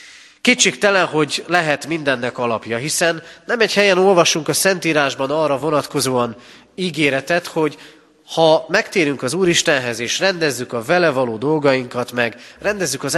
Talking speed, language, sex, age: 130 wpm, Hungarian, male, 30-49